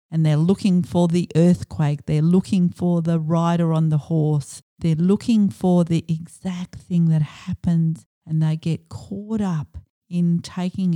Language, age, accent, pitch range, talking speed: English, 50-69, Australian, 155-180 Hz, 160 wpm